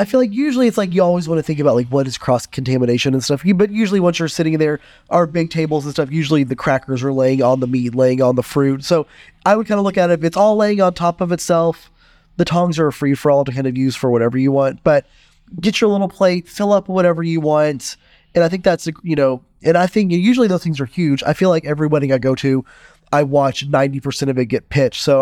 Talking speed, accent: 265 wpm, American